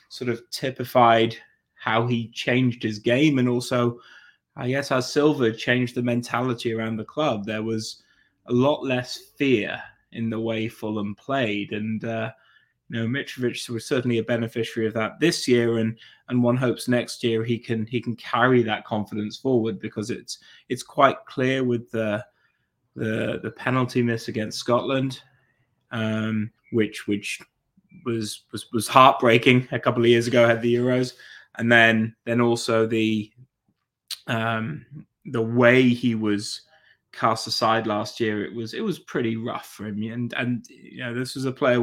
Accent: British